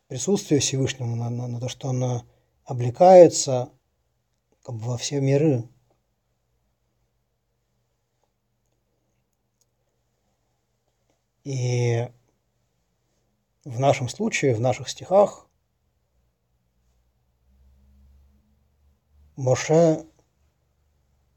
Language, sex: Russian, male